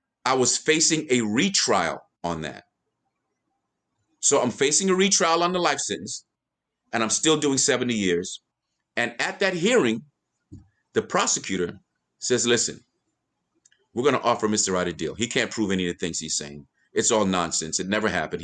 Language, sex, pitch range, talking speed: English, male, 90-120 Hz, 175 wpm